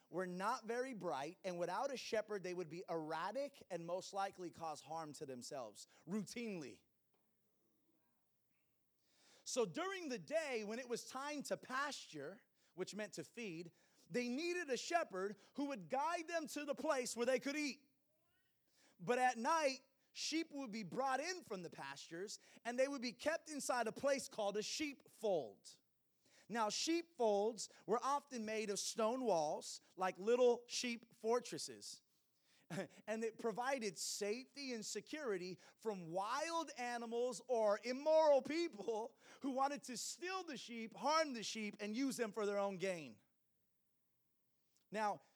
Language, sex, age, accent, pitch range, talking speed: English, male, 30-49, American, 185-270 Hz, 150 wpm